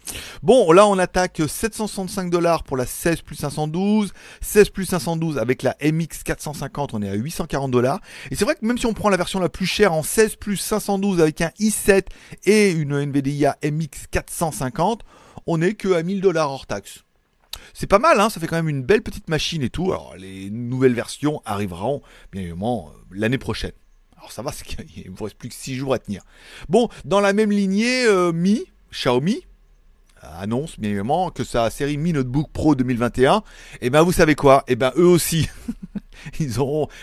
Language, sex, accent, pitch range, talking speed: French, male, French, 120-175 Hz, 195 wpm